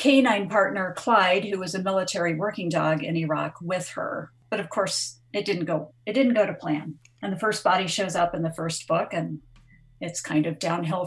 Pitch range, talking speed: 160-200 Hz, 210 wpm